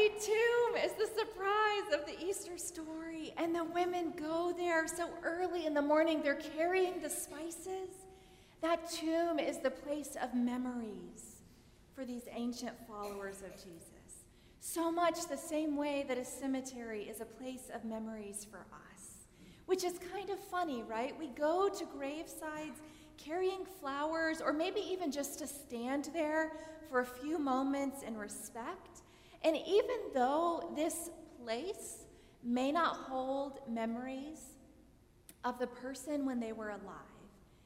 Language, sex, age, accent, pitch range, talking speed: English, female, 30-49, American, 245-330 Hz, 145 wpm